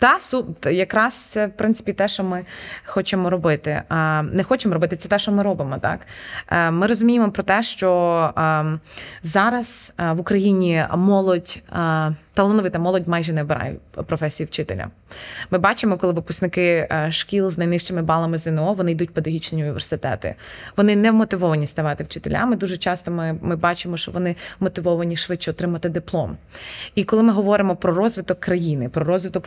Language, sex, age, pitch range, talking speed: Ukrainian, female, 20-39, 160-195 Hz, 160 wpm